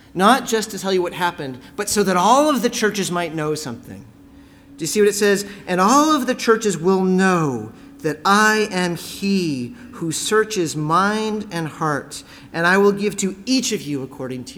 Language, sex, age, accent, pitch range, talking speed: English, male, 40-59, American, 145-215 Hz, 200 wpm